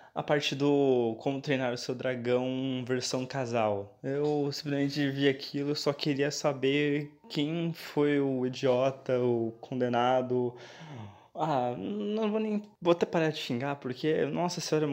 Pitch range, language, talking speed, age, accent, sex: 120-145 Hz, Portuguese, 145 wpm, 20-39, Brazilian, male